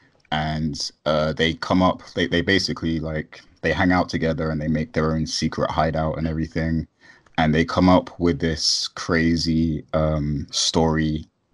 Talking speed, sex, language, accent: 160 wpm, male, English, British